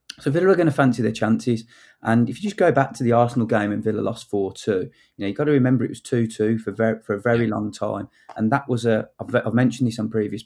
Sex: male